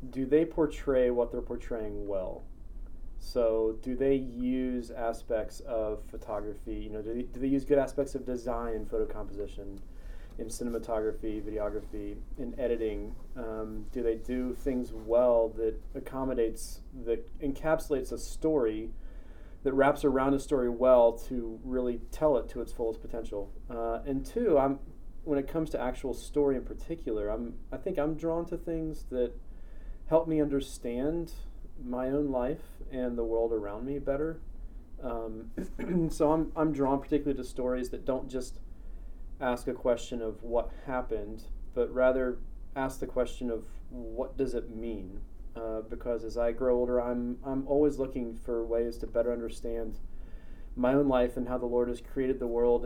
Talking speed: 160 wpm